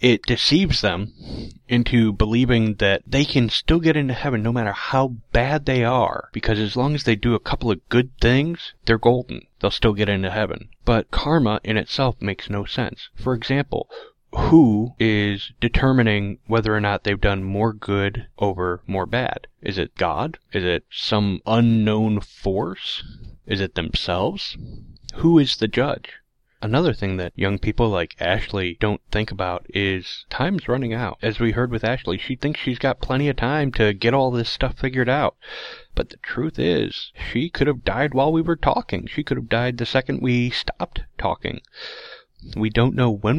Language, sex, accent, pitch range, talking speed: English, male, American, 100-125 Hz, 180 wpm